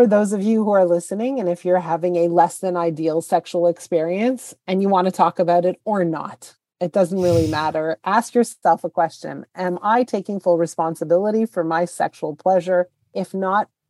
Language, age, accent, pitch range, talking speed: English, 30-49, American, 170-205 Hz, 195 wpm